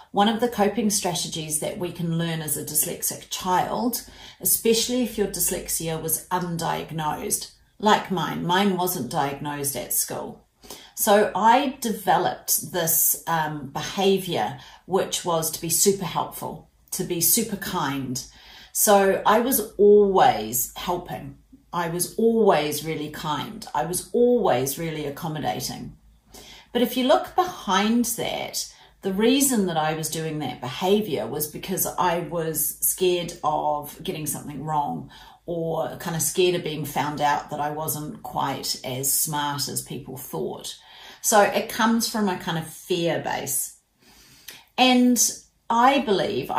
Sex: female